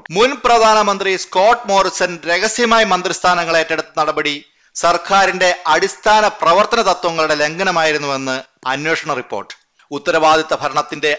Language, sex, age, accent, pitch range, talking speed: Malayalam, male, 30-49, native, 130-160 Hz, 90 wpm